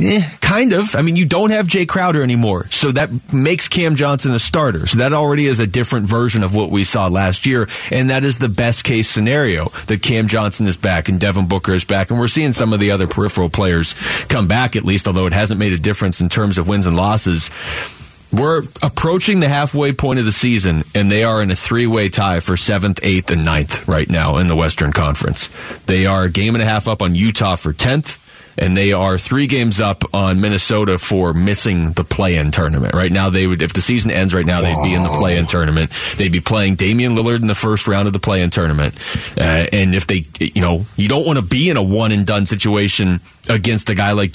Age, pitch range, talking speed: 30-49, 95-120 Hz, 235 wpm